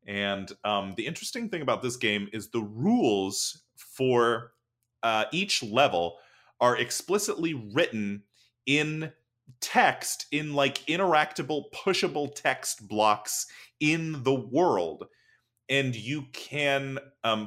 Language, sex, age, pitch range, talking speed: English, male, 30-49, 110-140 Hz, 115 wpm